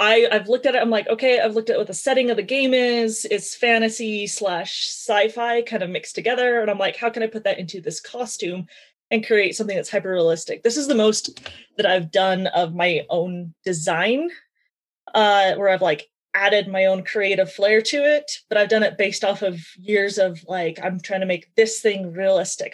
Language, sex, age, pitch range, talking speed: English, female, 20-39, 185-225 Hz, 210 wpm